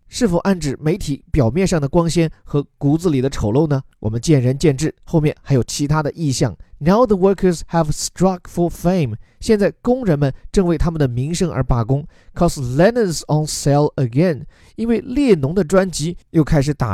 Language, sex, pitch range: Chinese, male, 130-180 Hz